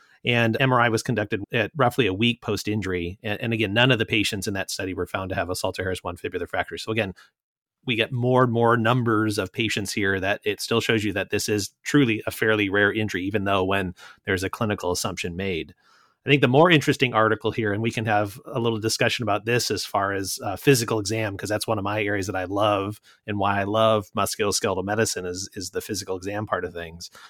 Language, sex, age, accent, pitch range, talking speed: English, male, 30-49, American, 100-120 Hz, 230 wpm